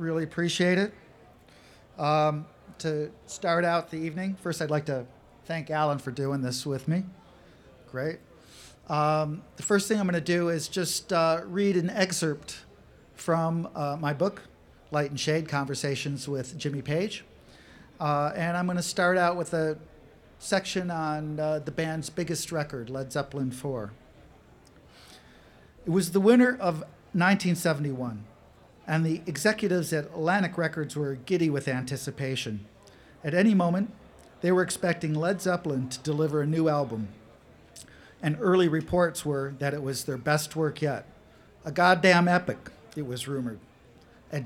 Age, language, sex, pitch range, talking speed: 50-69, English, male, 140-175 Hz, 150 wpm